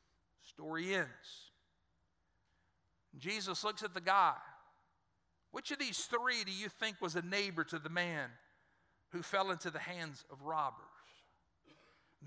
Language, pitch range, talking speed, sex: English, 170-230 Hz, 135 wpm, male